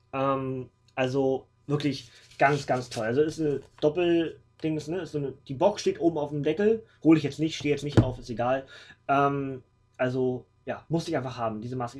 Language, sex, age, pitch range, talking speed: German, male, 20-39, 115-155 Hz, 200 wpm